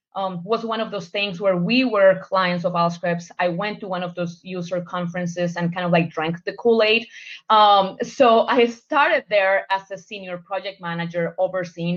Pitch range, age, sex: 175-225 Hz, 20-39, female